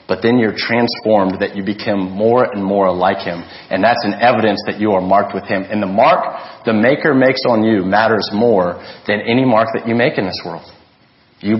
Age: 40-59